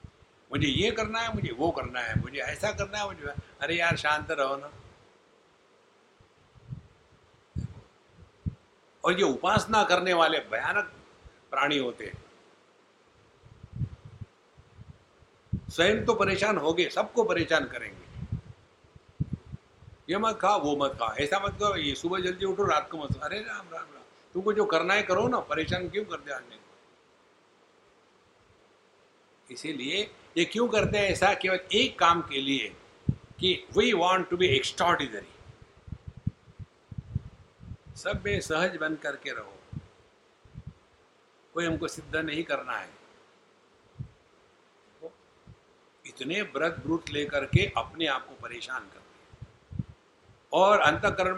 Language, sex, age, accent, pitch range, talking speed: English, male, 60-79, Indian, 160-220 Hz, 110 wpm